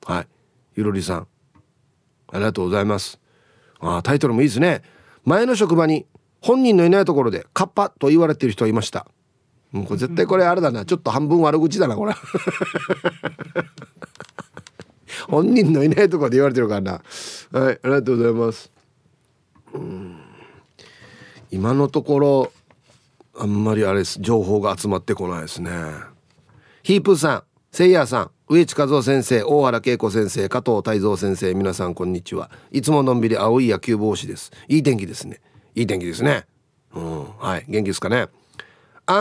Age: 40-59